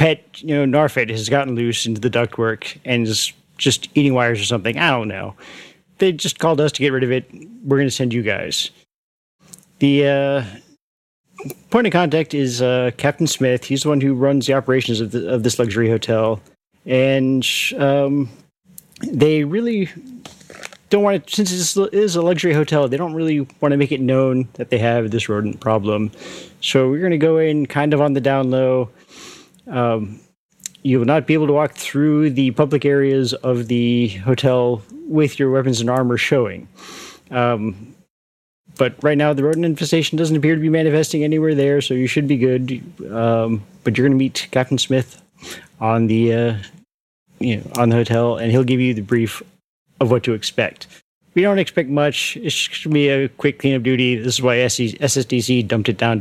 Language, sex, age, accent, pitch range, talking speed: English, male, 30-49, American, 120-155 Hz, 195 wpm